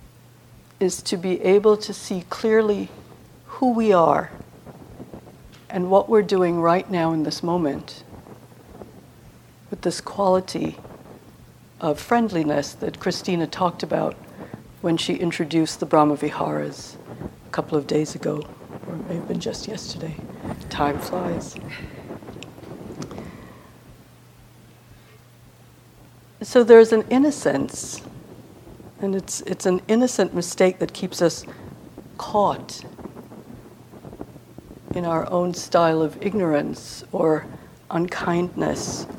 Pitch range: 165-210 Hz